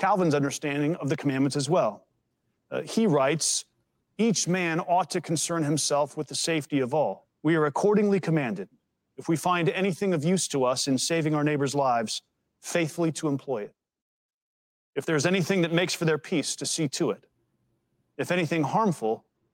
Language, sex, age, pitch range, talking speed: English, male, 40-59, 145-180 Hz, 175 wpm